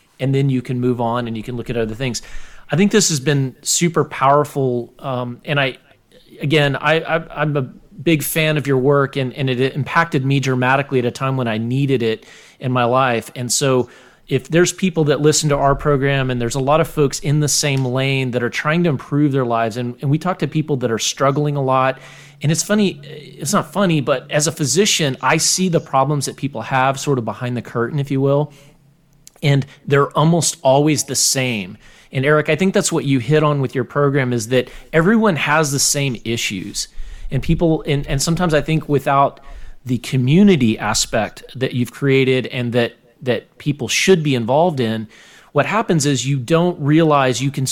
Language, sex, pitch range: English, male, 125-150 Hz